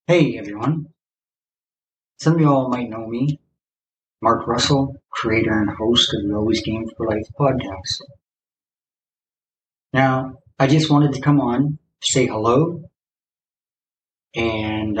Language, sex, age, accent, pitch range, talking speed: English, male, 30-49, American, 110-140 Hz, 130 wpm